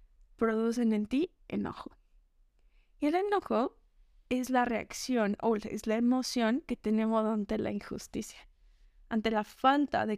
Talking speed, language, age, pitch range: 135 wpm, Spanish, 20-39, 205-250 Hz